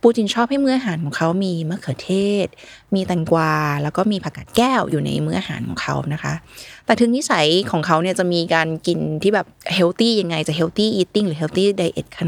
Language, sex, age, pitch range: Thai, female, 20-39, 160-205 Hz